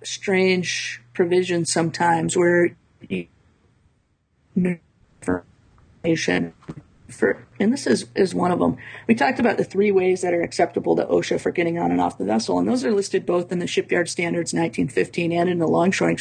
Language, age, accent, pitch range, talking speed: English, 50-69, American, 120-185 Hz, 165 wpm